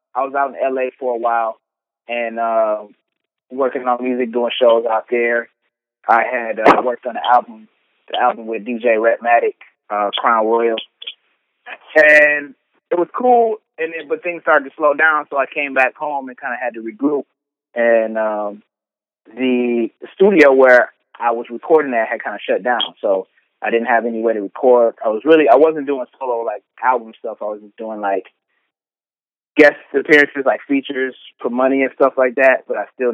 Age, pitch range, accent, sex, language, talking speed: 20-39, 115-140 Hz, American, male, English, 190 wpm